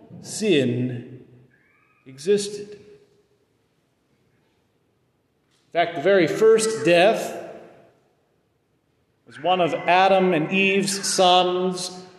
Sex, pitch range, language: male, 170-270 Hz, English